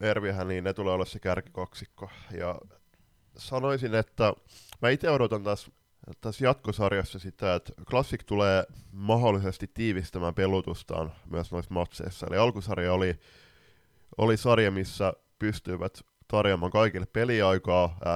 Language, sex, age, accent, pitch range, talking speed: Finnish, male, 20-39, native, 90-110 Hz, 120 wpm